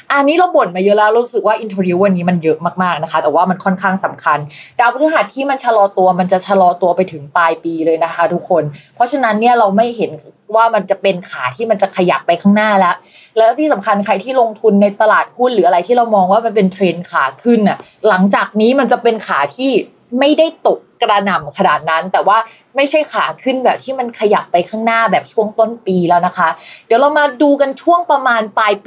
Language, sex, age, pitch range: Thai, female, 20-39, 180-235 Hz